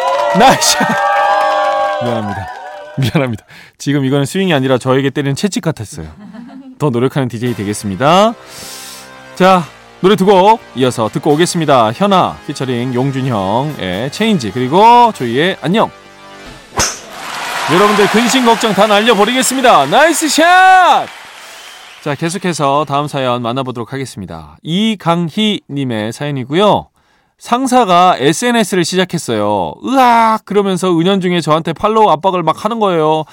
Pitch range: 120-190 Hz